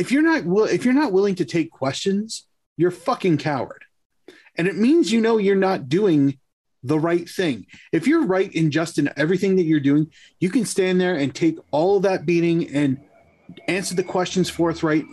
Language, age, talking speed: English, 30-49, 195 wpm